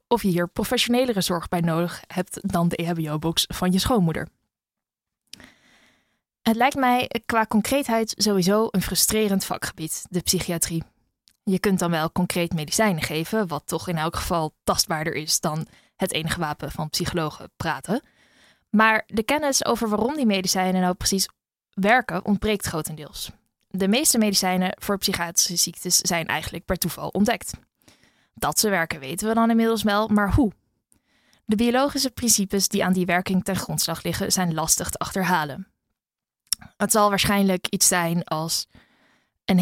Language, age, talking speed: Dutch, 20-39, 150 wpm